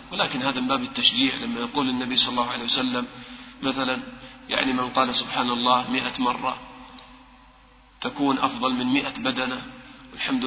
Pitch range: 130-175 Hz